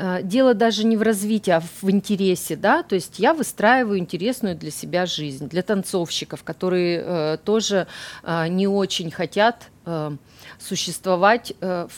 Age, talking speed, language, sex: 40-59, 125 wpm, Russian, female